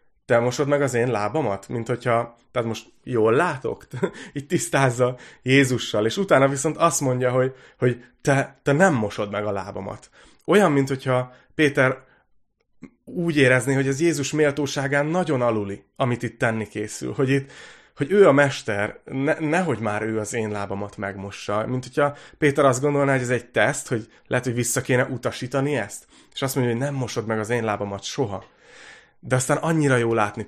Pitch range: 115-140 Hz